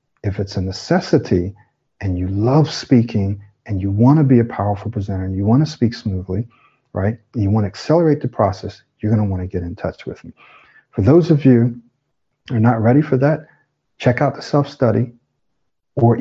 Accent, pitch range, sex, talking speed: American, 105-130 Hz, male, 190 wpm